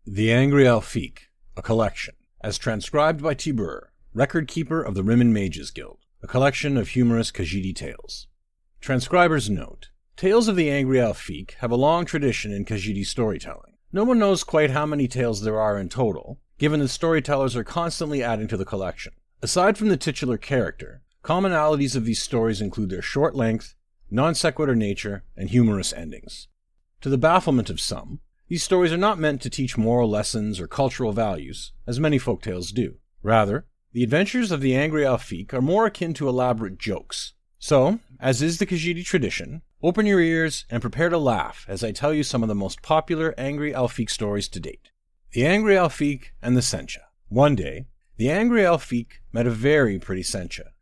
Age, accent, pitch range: 50-69, American, 105-155 Hz